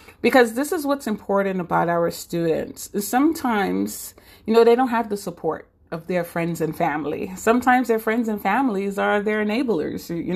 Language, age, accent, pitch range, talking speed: English, 30-49, American, 180-230 Hz, 175 wpm